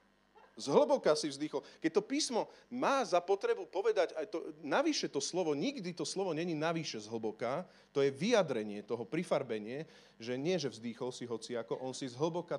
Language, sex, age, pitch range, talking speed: Slovak, male, 40-59, 140-205 Hz, 185 wpm